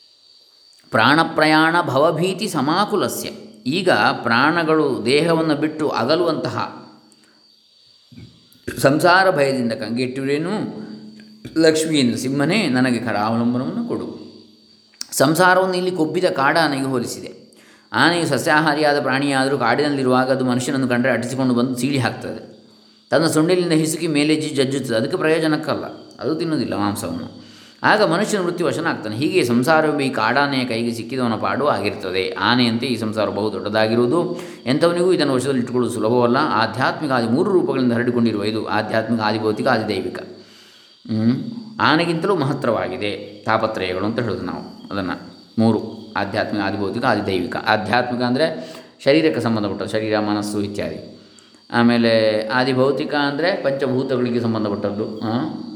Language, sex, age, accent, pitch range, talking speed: Kannada, male, 20-39, native, 110-150 Hz, 105 wpm